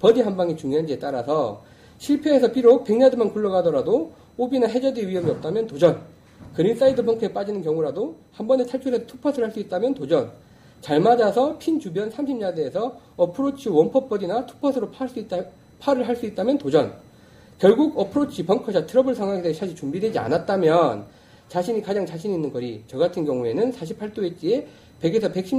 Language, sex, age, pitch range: Korean, male, 40-59, 160-245 Hz